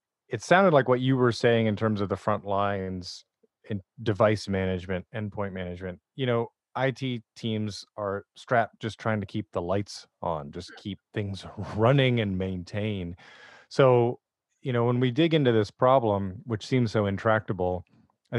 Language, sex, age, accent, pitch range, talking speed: English, male, 30-49, American, 100-120 Hz, 165 wpm